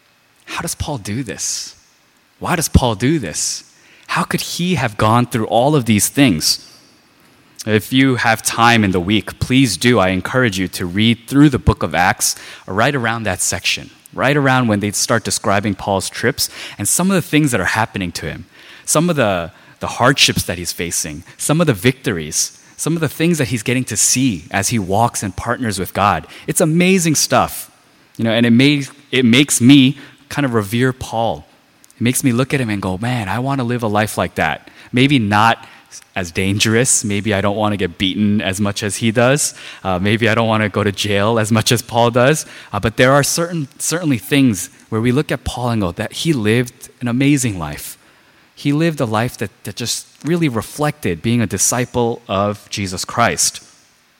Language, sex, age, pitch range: Korean, male, 20-39, 105-130 Hz